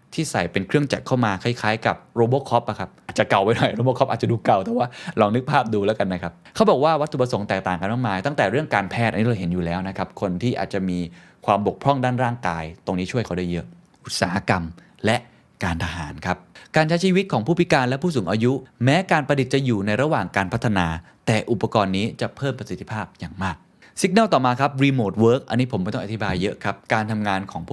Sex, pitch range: male, 95-135 Hz